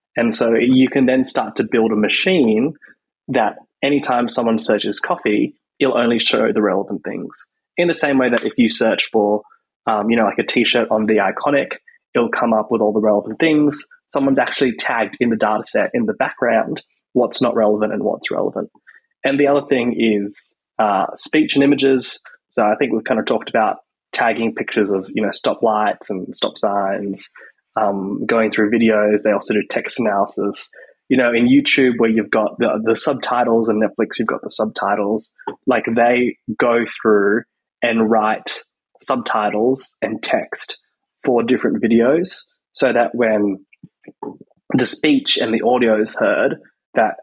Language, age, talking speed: English, 20-39, 175 wpm